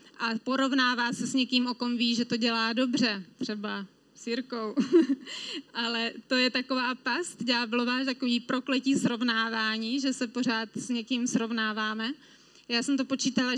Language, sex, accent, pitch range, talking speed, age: Czech, female, native, 240-275 Hz, 150 wpm, 20-39